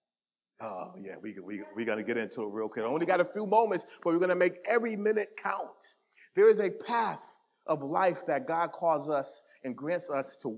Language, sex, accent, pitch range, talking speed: English, male, American, 155-210 Hz, 225 wpm